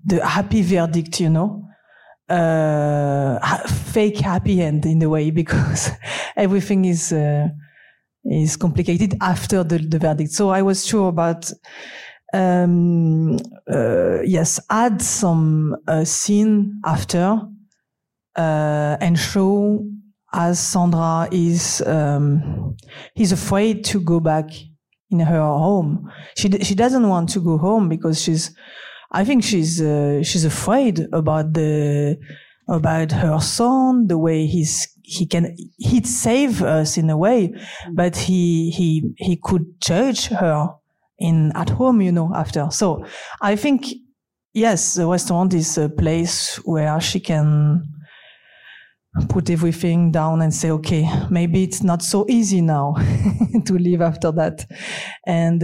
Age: 40-59